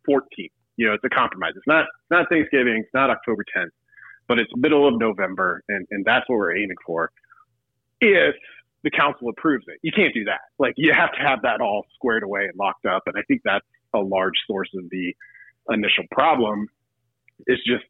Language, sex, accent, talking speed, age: English, male, American, 200 wpm, 40-59